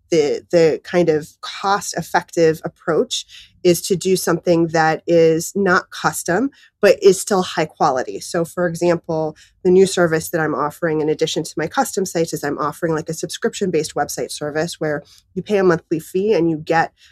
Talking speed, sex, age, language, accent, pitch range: 180 wpm, female, 30-49, English, American, 160-190 Hz